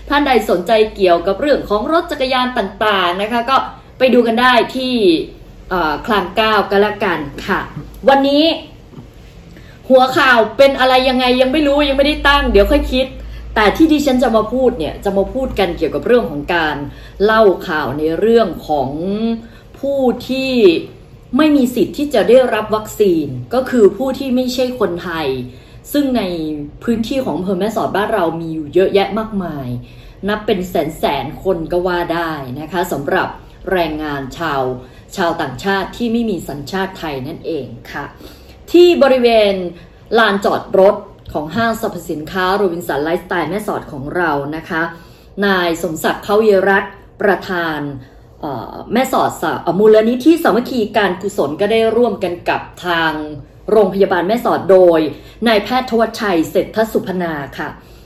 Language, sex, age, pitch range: English, female, 20-39, 170-250 Hz